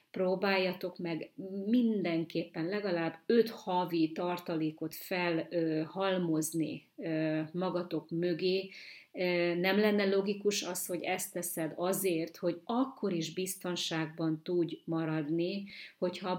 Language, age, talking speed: Hungarian, 30-49, 90 wpm